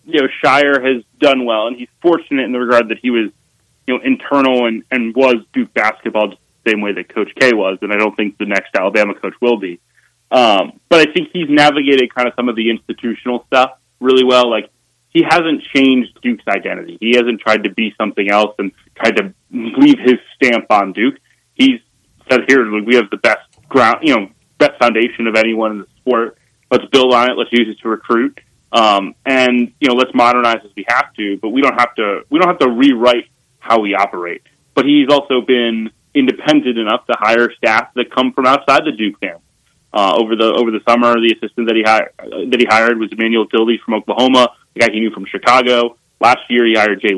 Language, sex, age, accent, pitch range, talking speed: English, male, 30-49, American, 110-130 Hz, 220 wpm